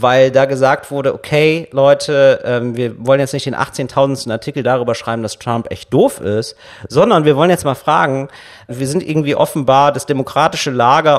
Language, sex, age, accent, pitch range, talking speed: German, male, 40-59, German, 120-155 Hz, 175 wpm